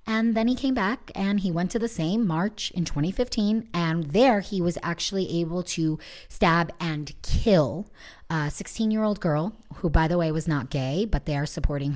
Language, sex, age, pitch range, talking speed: English, female, 30-49, 155-220 Hz, 190 wpm